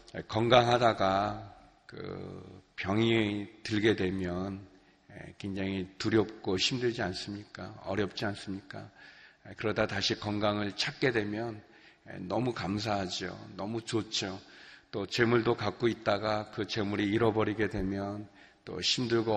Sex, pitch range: male, 100-120 Hz